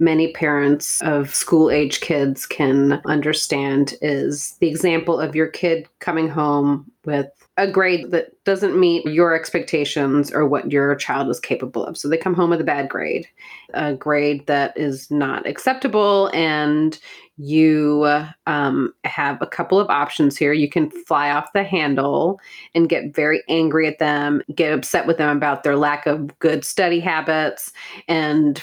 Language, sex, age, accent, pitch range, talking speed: English, female, 30-49, American, 145-165 Hz, 160 wpm